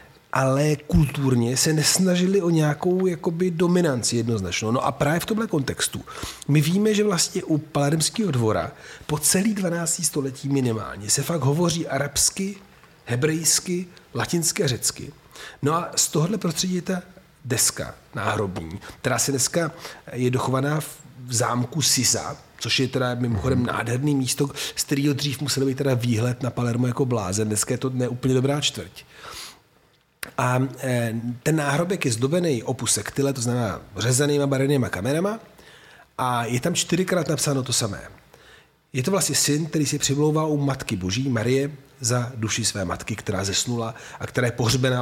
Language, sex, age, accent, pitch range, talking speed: Czech, male, 40-59, native, 120-160 Hz, 150 wpm